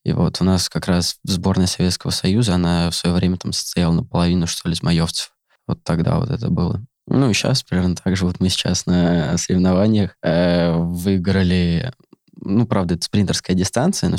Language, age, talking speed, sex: Russian, 20-39, 180 wpm, male